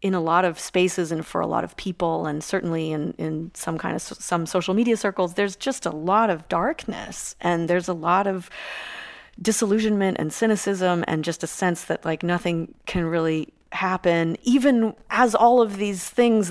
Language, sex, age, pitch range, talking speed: English, female, 30-49, 170-215 Hz, 195 wpm